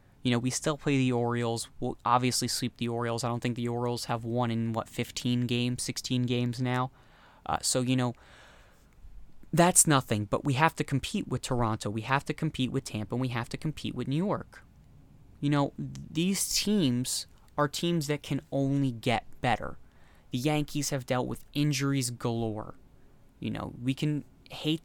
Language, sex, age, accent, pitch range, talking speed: English, male, 20-39, American, 120-145 Hz, 185 wpm